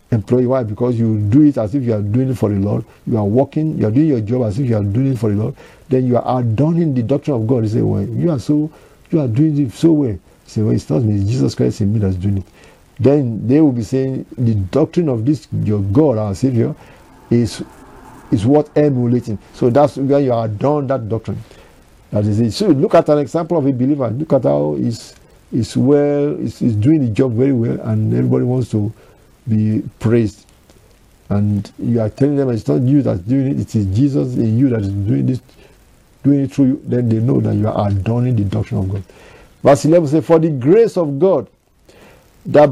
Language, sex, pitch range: English, male, 110-145 Hz